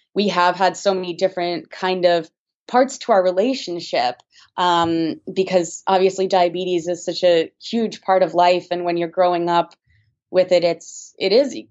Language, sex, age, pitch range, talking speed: English, female, 20-39, 170-210 Hz, 170 wpm